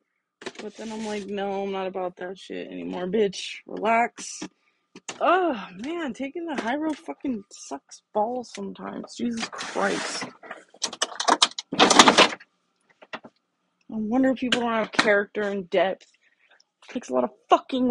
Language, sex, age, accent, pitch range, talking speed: English, female, 20-39, American, 200-250 Hz, 130 wpm